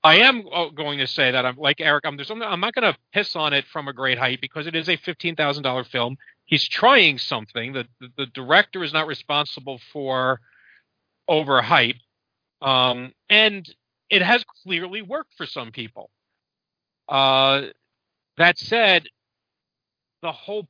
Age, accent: 50-69, American